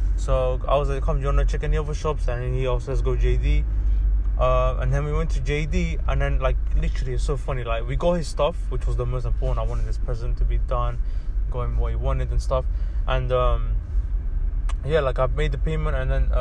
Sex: male